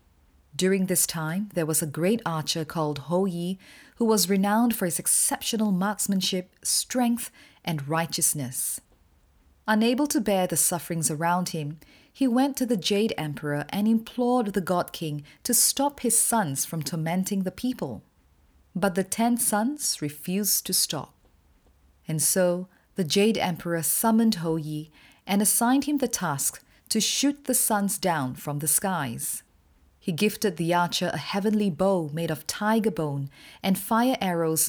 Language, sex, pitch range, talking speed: English, female, 150-210 Hz, 155 wpm